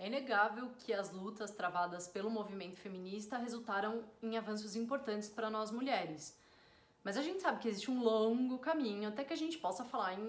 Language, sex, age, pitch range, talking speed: Portuguese, female, 30-49, 195-255 Hz, 185 wpm